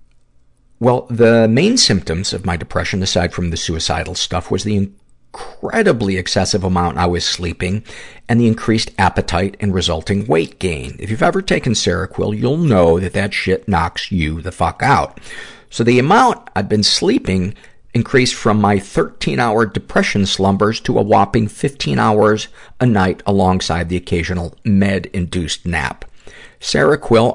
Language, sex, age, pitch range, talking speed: English, male, 50-69, 85-105 Hz, 150 wpm